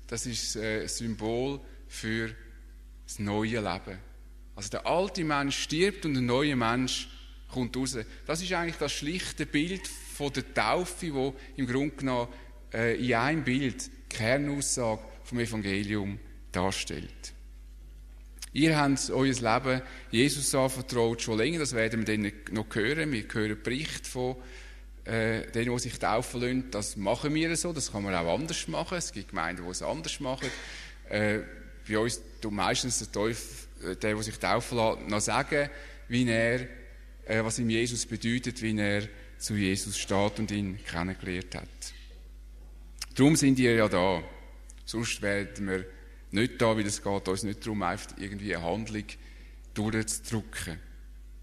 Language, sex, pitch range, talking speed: English, male, 100-130 Hz, 160 wpm